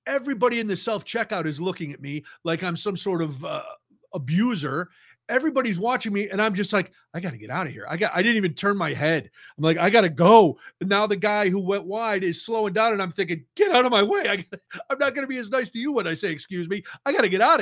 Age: 40-59